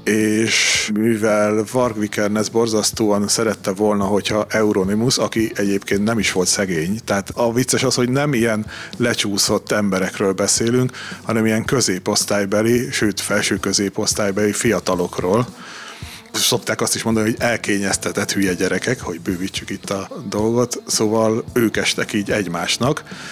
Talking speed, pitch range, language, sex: 125 wpm, 100-120 Hz, Hungarian, male